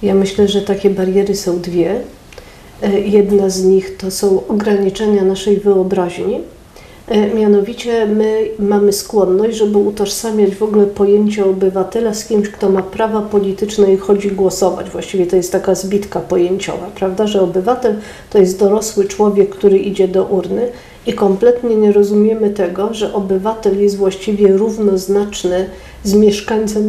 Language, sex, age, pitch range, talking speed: Polish, female, 40-59, 195-215 Hz, 140 wpm